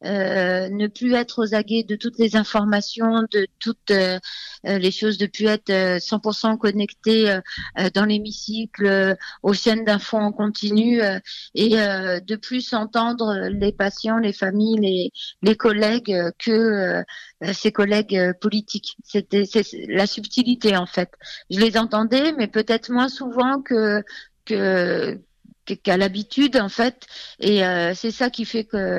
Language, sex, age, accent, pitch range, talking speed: French, female, 30-49, French, 195-225 Hz, 155 wpm